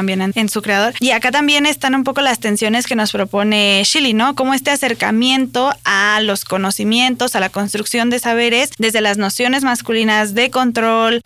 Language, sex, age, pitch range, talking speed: Spanish, female, 20-39, 215-265 Hz, 180 wpm